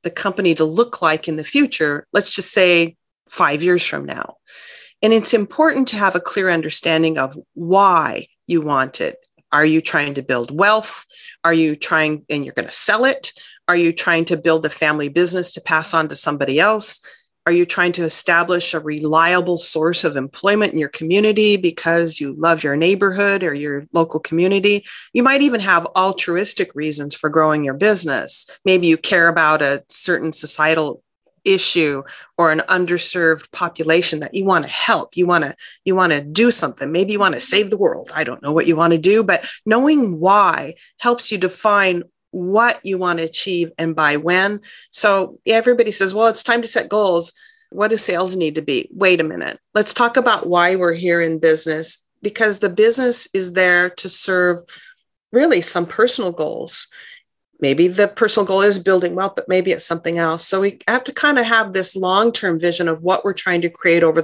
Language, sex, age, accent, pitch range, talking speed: English, female, 40-59, American, 160-205 Hz, 195 wpm